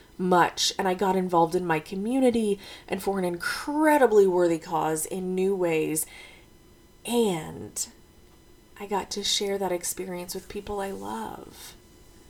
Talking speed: 135 wpm